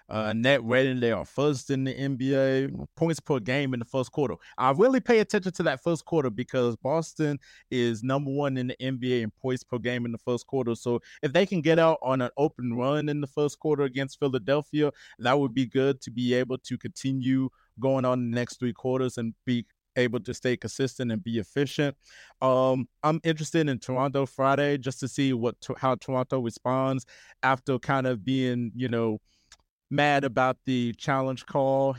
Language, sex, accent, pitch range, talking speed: English, male, American, 125-145 Hz, 195 wpm